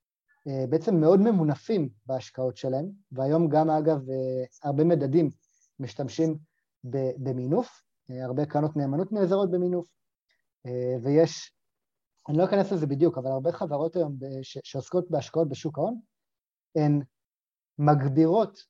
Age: 30-49